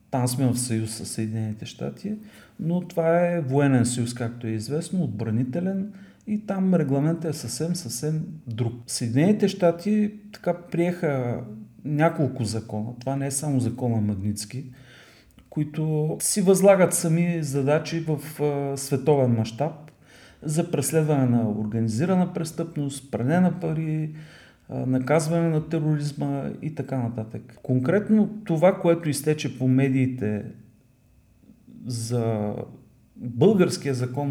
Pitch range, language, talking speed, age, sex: 125-170 Hz, Bulgarian, 115 wpm, 40-59, male